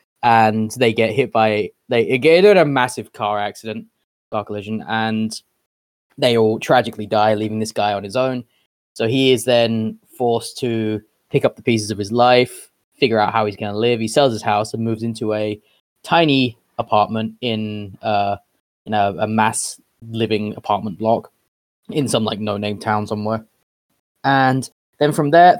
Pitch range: 110-140 Hz